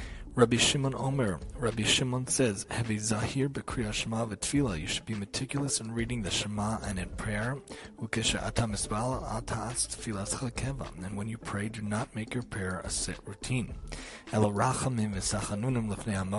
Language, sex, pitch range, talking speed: English, male, 95-120 Hz, 105 wpm